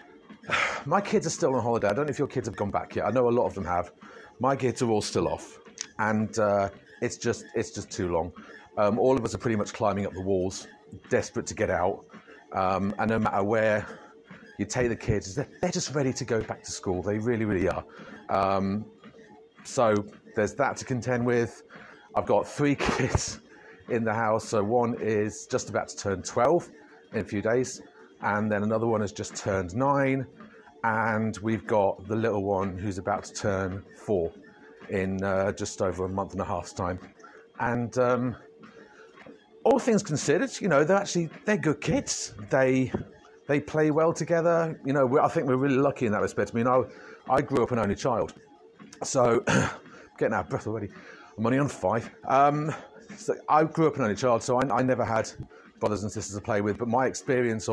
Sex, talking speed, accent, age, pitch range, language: male, 205 wpm, British, 40-59, 105-135 Hz, English